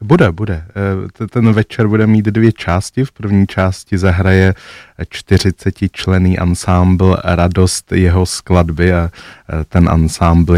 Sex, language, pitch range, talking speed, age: male, Czech, 80-90 Hz, 120 wpm, 20-39